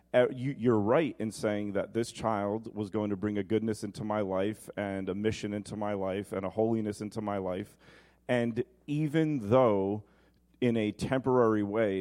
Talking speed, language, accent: 185 wpm, English, American